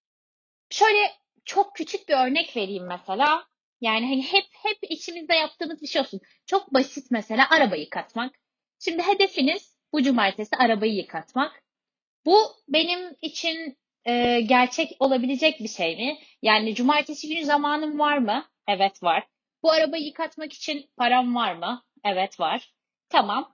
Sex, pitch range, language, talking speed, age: female, 240-340 Hz, Turkish, 140 wpm, 30-49